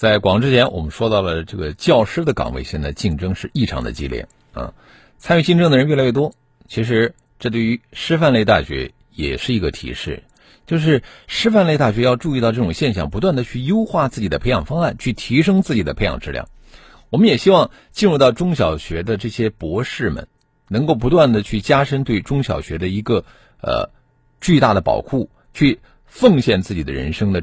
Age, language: 50-69, Chinese